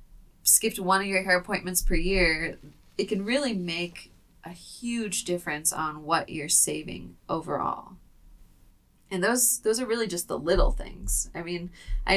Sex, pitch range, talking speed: female, 165-190 Hz, 160 wpm